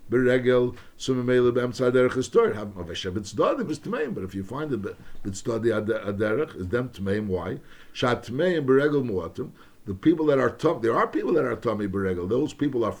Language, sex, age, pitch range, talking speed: English, male, 60-79, 110-145 Hz, 160 wpm